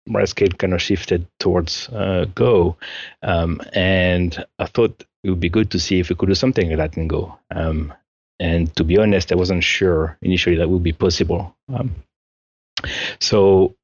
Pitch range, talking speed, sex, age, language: 80-95 Hz, 180 wpm, male, 30-49, English